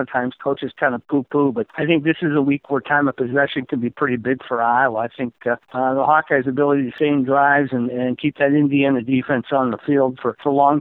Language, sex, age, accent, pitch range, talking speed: English, male, 50-69, American, 125-145 Hz, 255 wpm